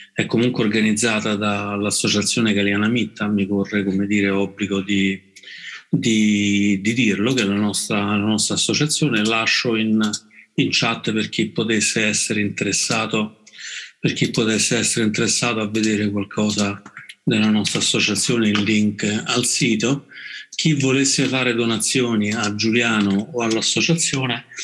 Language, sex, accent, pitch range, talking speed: Italian, male, native, 100-110 Hz, 130 wpm